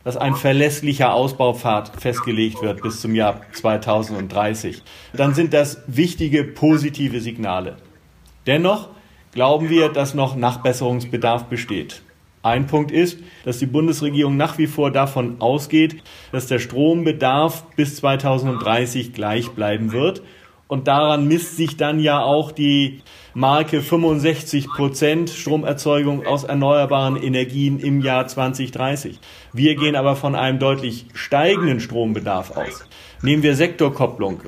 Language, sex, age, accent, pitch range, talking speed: German, male, 40-59, German, 120-150 Hz, 125 wpm